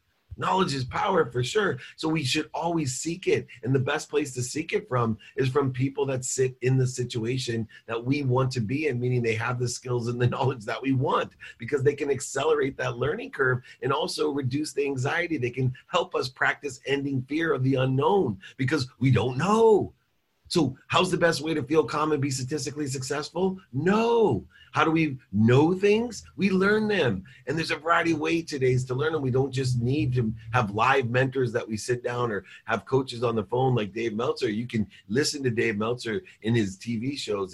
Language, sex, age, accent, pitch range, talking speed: English, male, 40-59, American, 120-150 Hz, 210 wpm